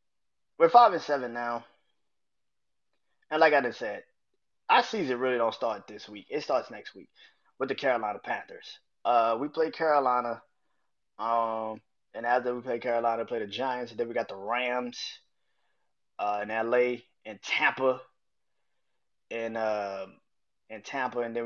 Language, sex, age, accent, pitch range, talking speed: English, male, 20-39, American, 115-135 Hz, 155 wpm